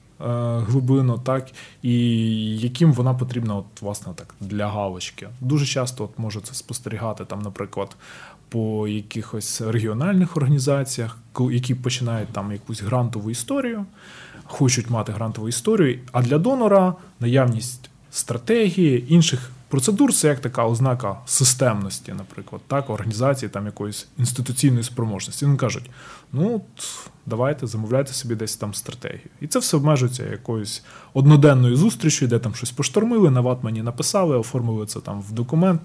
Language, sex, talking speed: Ukrainian, male, 135 wpm